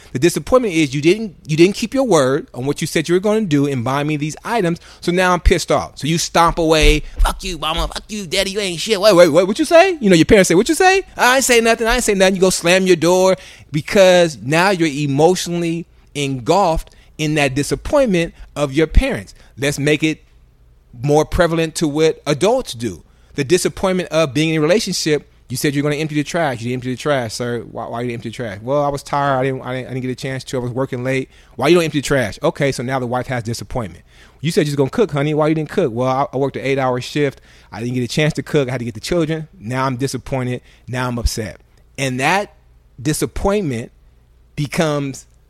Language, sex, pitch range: English, male, 130-175 Hz